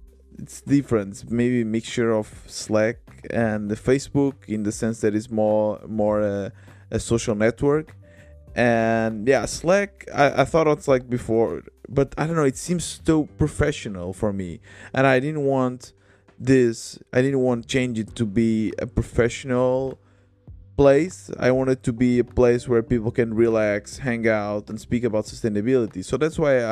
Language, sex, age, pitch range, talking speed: English, male, 20-39, 105-130 Hz, 165 wpm